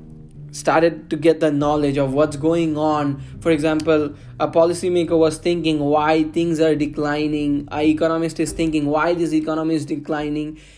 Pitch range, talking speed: 150-175 Hz, 155 wpm